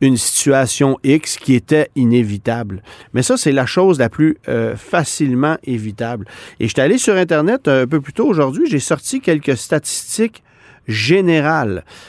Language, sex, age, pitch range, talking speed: French, male, 40-59, 120-155 Hz, 160 wpm